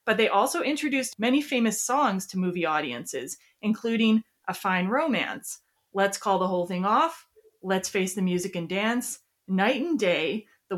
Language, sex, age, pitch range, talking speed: English, female, 30-49, 190-250 Hz, 165 wpm